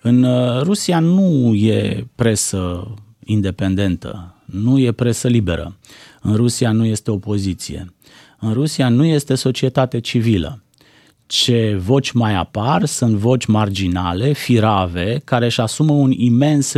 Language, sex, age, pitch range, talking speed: Romanian, male, 30-49, 105-140 Hz, 120 wpm